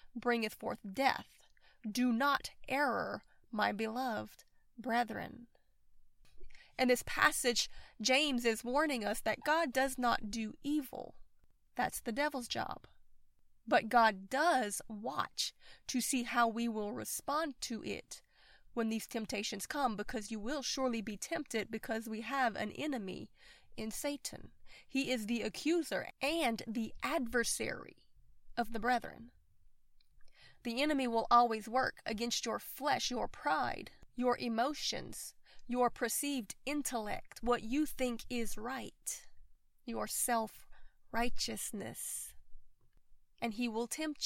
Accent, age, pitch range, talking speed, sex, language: American, 30-49, 230-275 Hz, 125 wpm, female, English